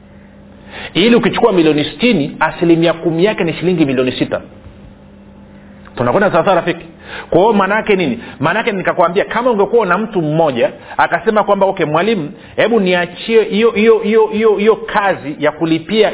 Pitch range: 165-215 Hz